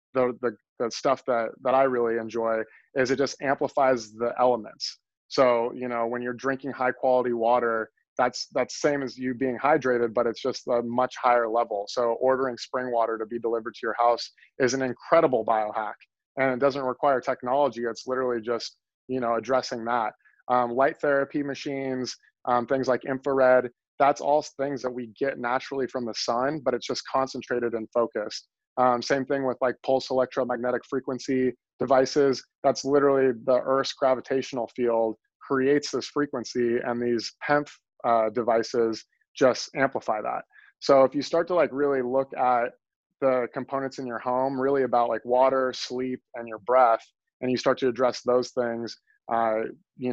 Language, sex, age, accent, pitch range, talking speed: English, male, 20-39, American, 120-135 Hz, 175 wpm